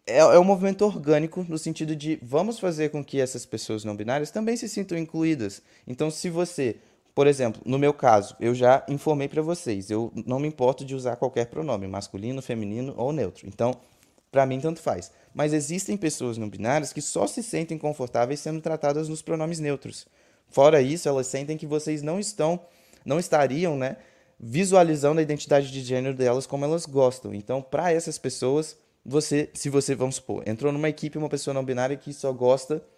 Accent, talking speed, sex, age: Brazilian, 185 wpm, male, 20-39